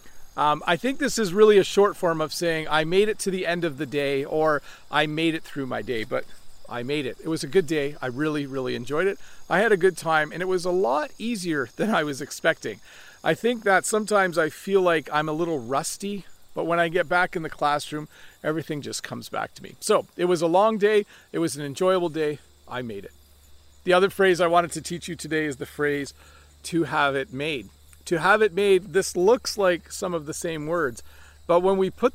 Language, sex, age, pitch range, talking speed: English, male, 40-59, 150-195 Hz, 235 wpm